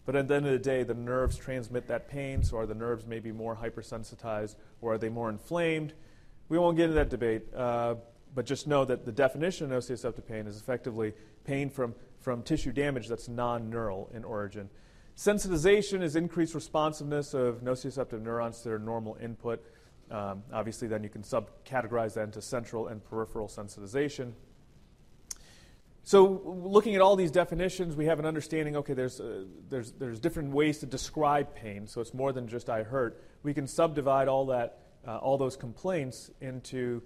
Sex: male